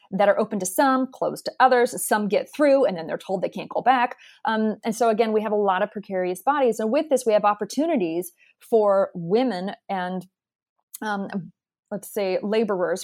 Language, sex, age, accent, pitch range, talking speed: English, female, 30-49, American, 190-240 Hz, 200 wpm